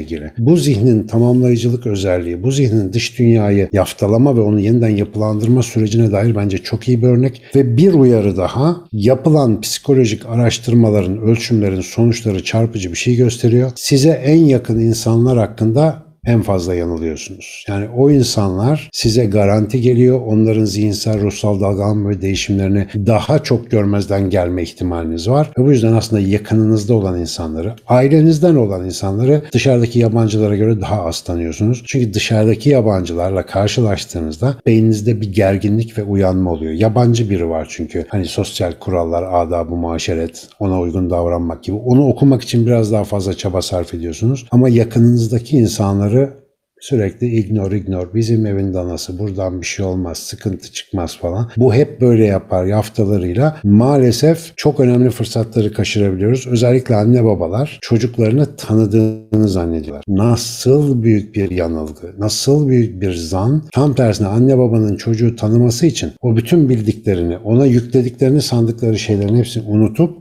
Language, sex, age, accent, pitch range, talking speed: Turkish, male, 60-79, native, 100-125 Hz, 140 wpm